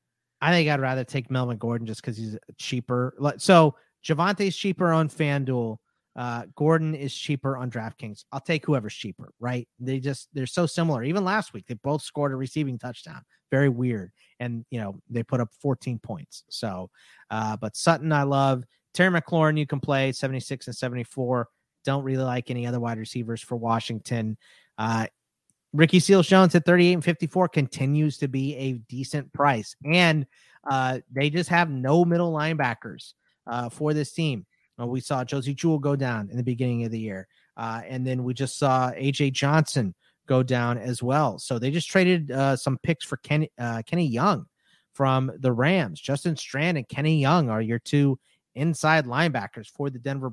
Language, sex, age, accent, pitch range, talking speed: English, male, 30-49, American, 120-155 Hz, 180 wpm